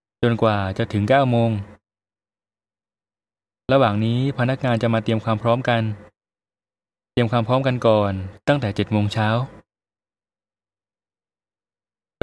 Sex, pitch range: male, 105-120 Hz